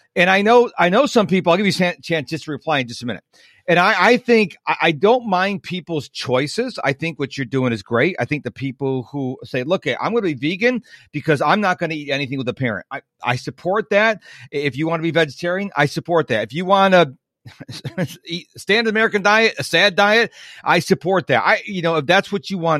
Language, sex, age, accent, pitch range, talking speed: English, male, 40-59, American, 135-185 Hz, 245 wpm